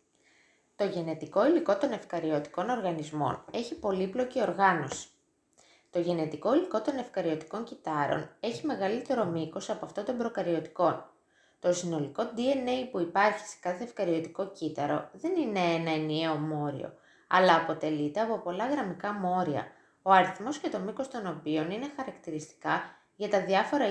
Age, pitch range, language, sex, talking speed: 20-39, 160-230 Hz, Greek, female, 135 wpm